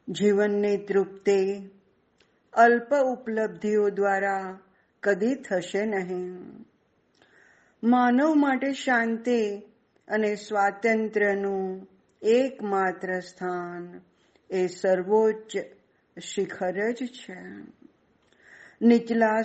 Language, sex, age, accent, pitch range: Gujarati, female, 50-69, native, 190-235 Hz